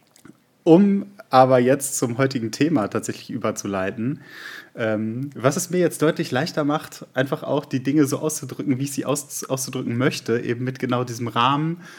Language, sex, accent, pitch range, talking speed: German, male, German, 120-145 Hz, 160 wpm